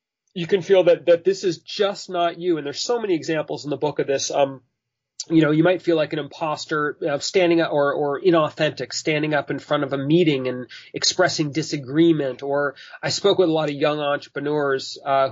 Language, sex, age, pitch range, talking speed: English, male, 30-49, 140-185 Hz, 215 wpm